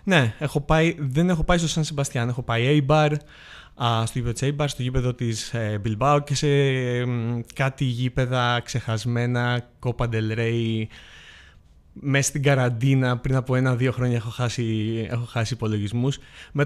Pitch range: 115-135 Hz